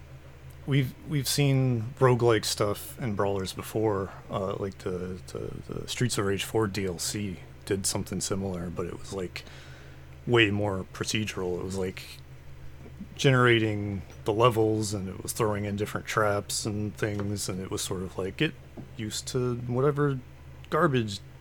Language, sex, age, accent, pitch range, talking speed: English, male, 30-49, American, 70-110 Hz, 150 wpm